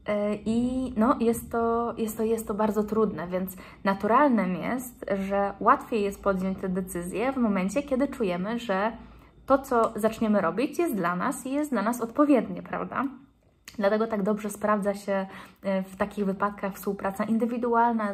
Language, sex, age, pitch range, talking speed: Polish, female, 20-39, 200-240 Hz, 140 wpm